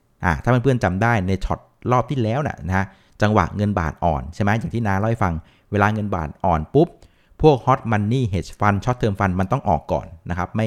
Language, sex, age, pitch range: Thai, male, 60-79, 90-115 Hz